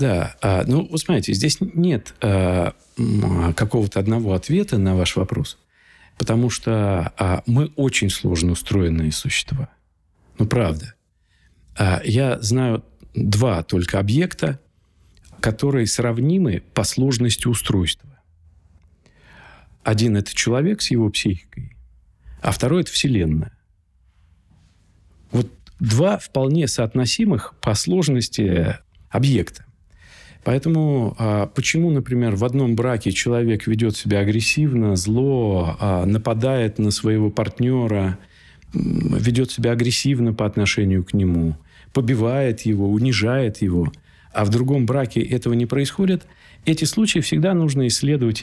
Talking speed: 105 wpm